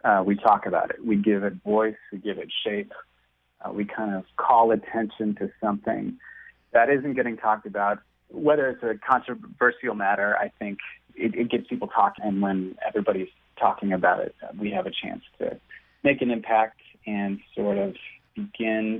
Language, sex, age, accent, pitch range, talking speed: English, male, 30-49, American, 100-120 Hz, 175 wpm